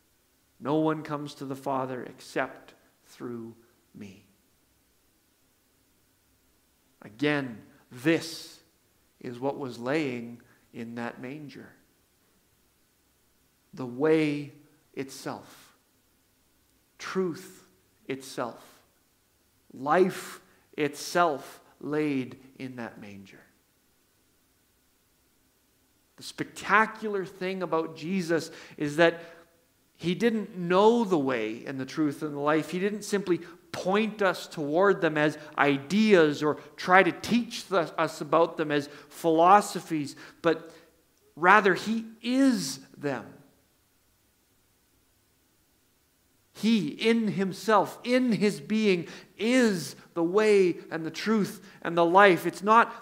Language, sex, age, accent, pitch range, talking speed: English, male, 50-69, American, 145-195 Hz, 100 wpm